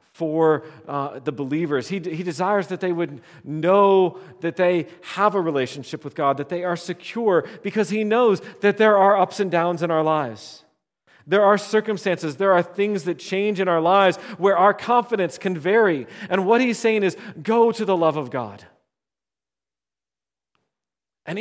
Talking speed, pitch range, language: 175 wpm, 150-195 Hz, English